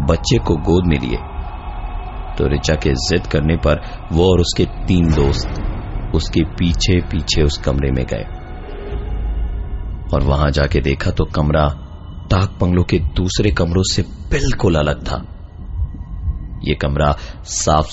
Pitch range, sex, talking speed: 75-90 Hz, male, 135 wpm